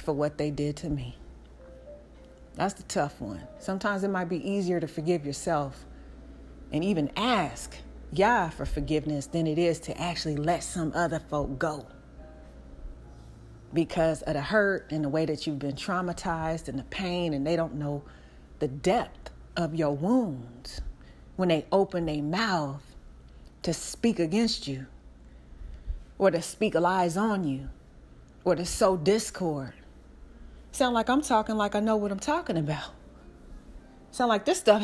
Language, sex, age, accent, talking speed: English, female, 30-49, American, 155 wpm